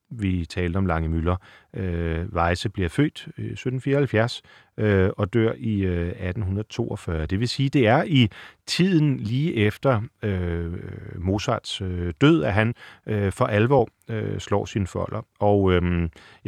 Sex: male